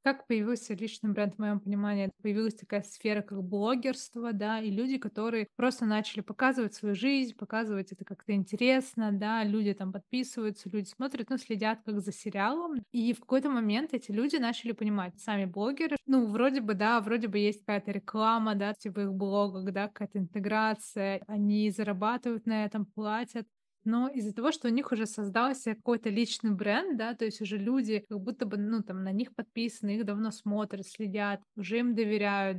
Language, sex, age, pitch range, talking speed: Russian, female, 20-39, 205-235 Hz, 180 wpm